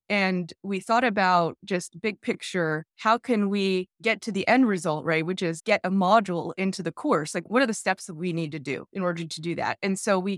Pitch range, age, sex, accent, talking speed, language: 180-230 Hz, 20-39, female, American, 245 wpm, English